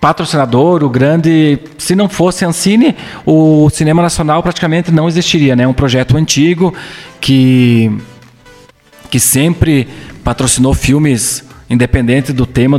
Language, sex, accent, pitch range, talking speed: Portuguese, male, Brazilian, 125-165 Hz, 115 wpm